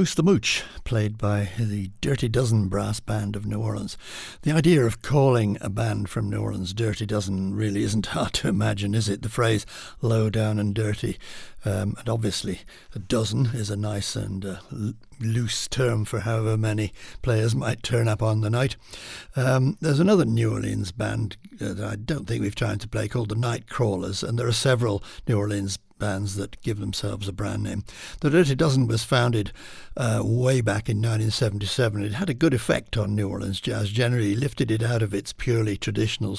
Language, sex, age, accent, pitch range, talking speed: English, male, 60-79, British, 100-120 Hz, 195 wpm